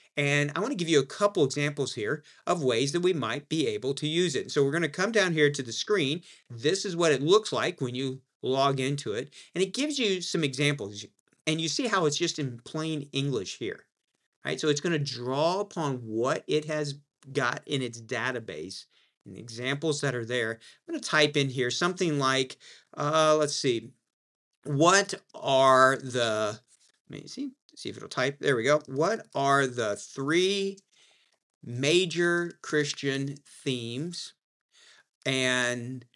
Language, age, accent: English, 40-59, American